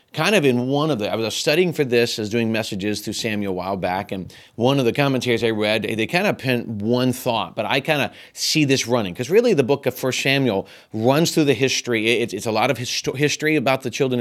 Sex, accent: male, American